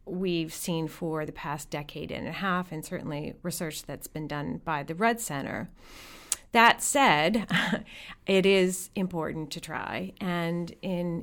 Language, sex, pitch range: English, female, 160-200 Hz